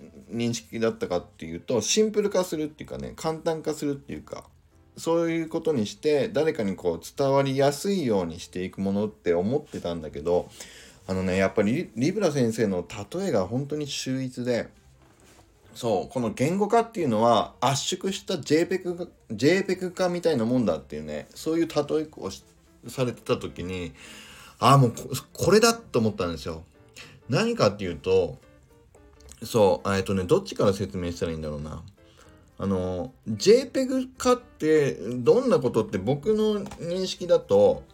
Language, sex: Japanese, male